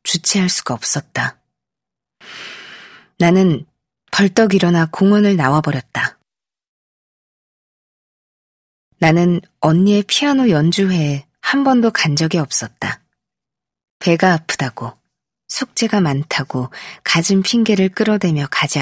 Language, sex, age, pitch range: Korean, female, 20-39, 150-200 Hz